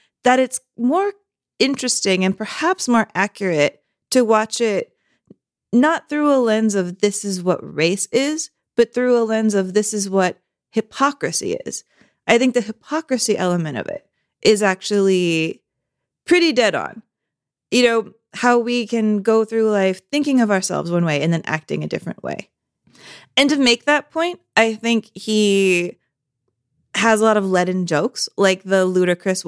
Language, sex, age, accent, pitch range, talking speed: English, female, 30-49, American, 185-240 Hz, 160 wpm